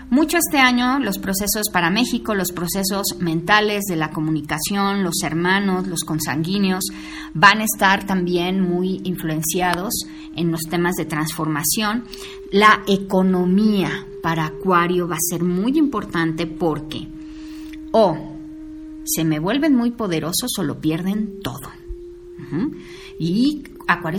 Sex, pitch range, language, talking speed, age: female, 165-235 Hz, Spanish, 130 wpm, 30-49